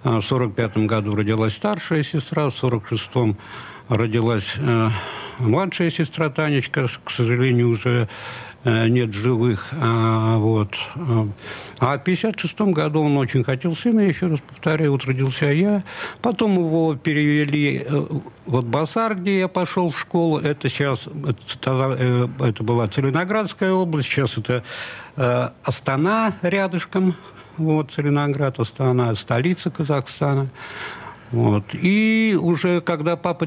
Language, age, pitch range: Russian, 70-89, 115-165 Hz